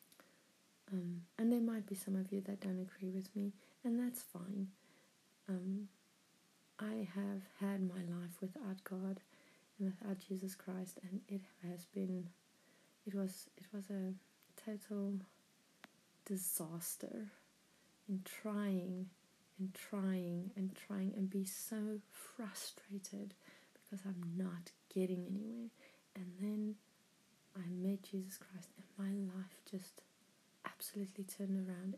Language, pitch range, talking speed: English, 190-215 Hz, 125 wpm